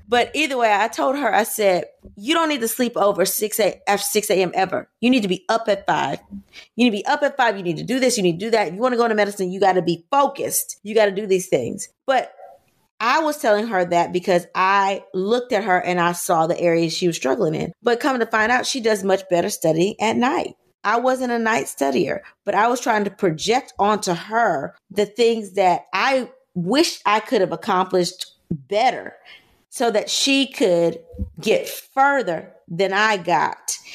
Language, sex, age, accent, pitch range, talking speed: English, female, 30-49, American, 180-235 Hz, 215 wpm